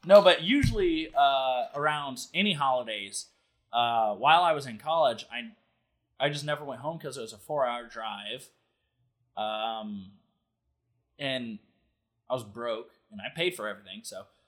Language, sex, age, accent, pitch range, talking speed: English, male, 20-39, American, 110-150 Hz, 150 wpm